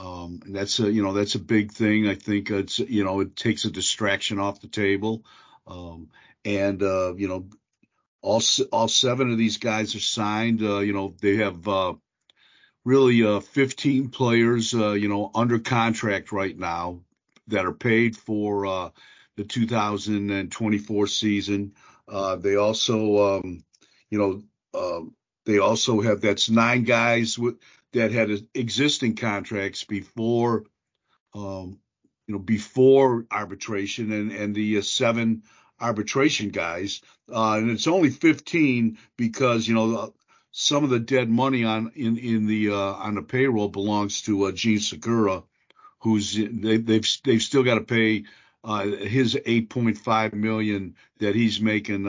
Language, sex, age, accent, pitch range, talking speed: English, male, 50-69, American, 100-115 Hz, 155 wpm